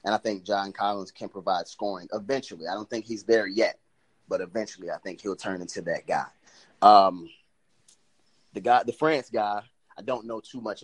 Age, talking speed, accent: 30-49, 190 wpm, American